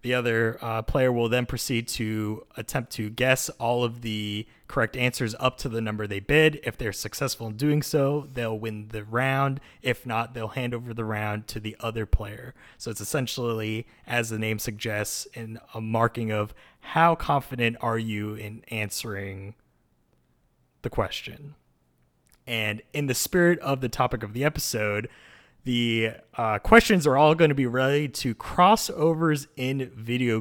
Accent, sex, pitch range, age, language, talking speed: American, male, 110-135 Hz, 30-49, English, 170 wpm